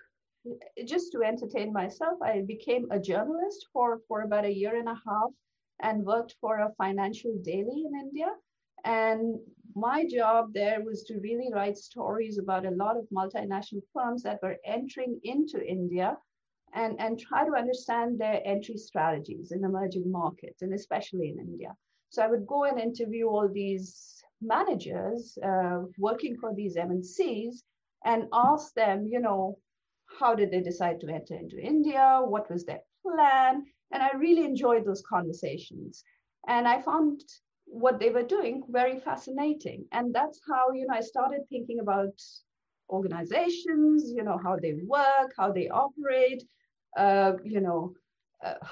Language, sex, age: English, female, 50-69